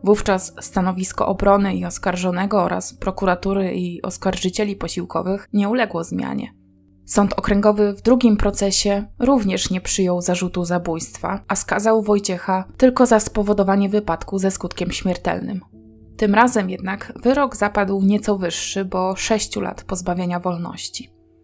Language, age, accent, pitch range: Polish, 20-39, native, 185-210 Hz